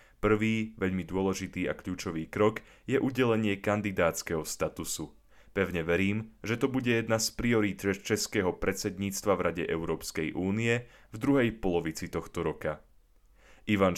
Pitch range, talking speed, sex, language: 90-115 Hz, 130 wpm, male, Slovak